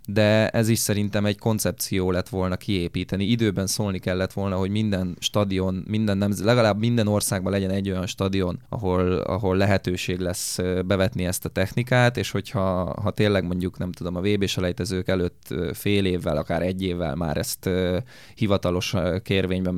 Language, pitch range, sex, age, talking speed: Hungarian, 90-105 Hz, male, 20-39, 160 wpm